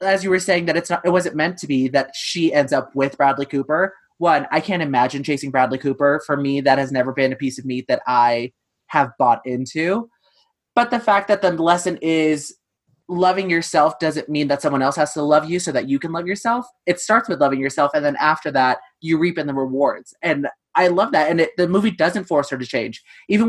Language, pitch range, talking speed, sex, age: English, 150-205 Hz, 240 wpm, male, 20-39